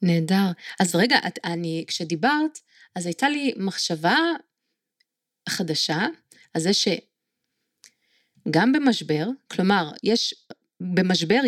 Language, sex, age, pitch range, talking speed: Hebrew, female, 30-49, 175-235 Hz, 95 wpm